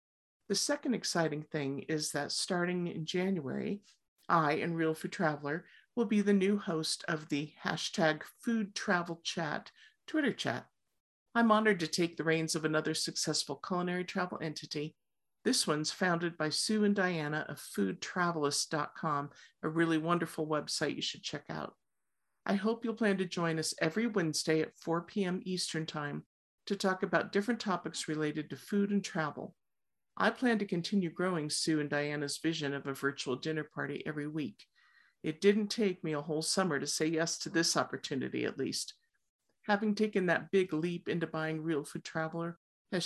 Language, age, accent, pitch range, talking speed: English, 50-69, American, 155-200 Hz, 170 wpm